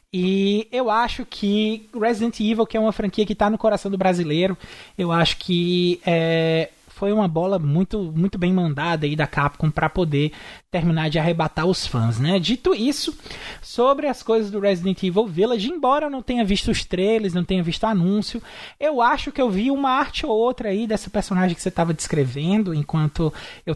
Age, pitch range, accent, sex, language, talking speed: 20-39, 165-220 Hz, Brazilian, male, Portuguese, 195 wpm